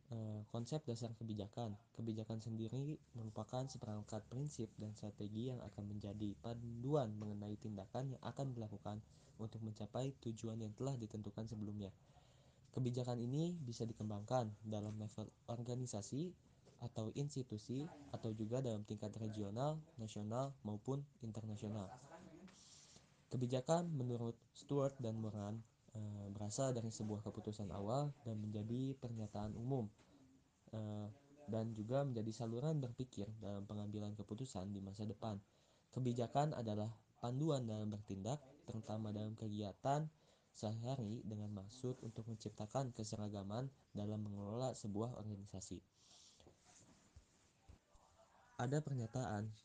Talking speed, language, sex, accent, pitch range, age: 105 wpm, Indonesian, male, native, 105-130 Hz, 20-39